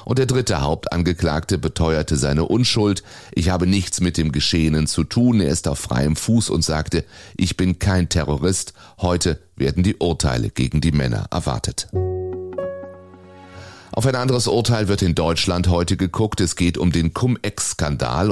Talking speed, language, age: 155 wpm, German, 30-49